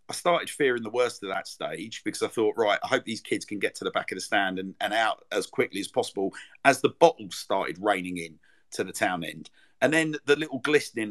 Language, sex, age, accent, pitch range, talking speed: English, male, 50-69, British, 105-135 Hz, 250 wpm